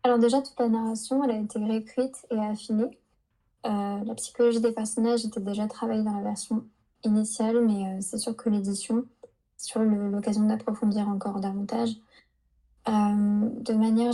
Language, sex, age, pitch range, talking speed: French, female, 20-39, 215-240 Hz, 160 wpm